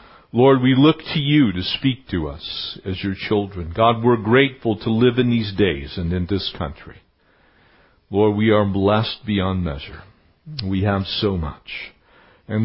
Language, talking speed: English, 165 wpm